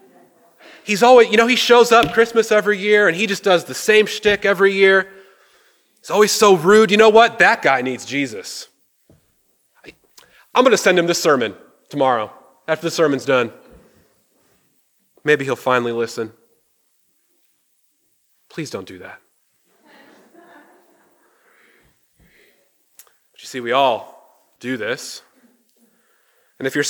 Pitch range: 155-210 Hz